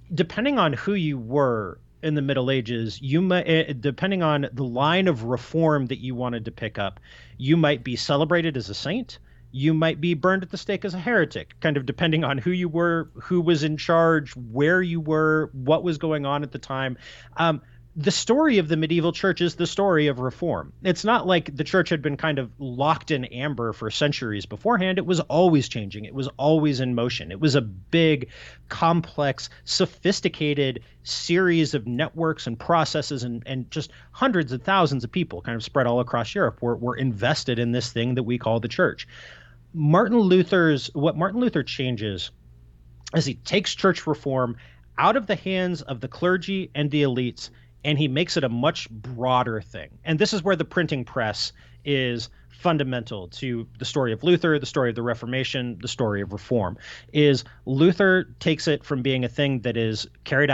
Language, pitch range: English, 120-165 Hz